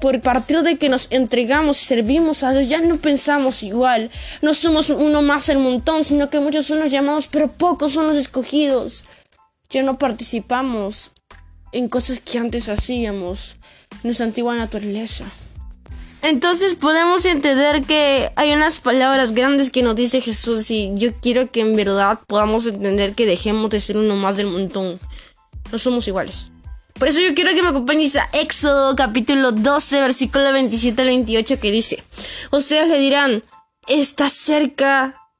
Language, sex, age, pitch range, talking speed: Spanish, female, 20-39, 220-285 Hz, 165 wpm